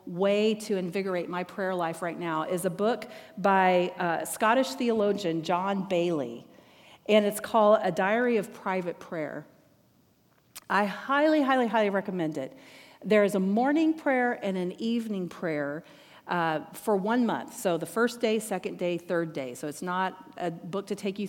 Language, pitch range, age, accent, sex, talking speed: English, 180-245 Hz, 40-59, American, female, 170 wpm